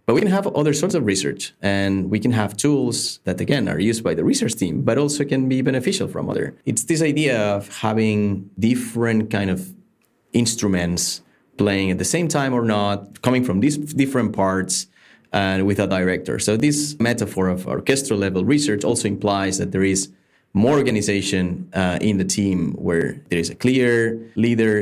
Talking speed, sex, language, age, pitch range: 185 wpm, male, English, 30-49, 95-130 Hz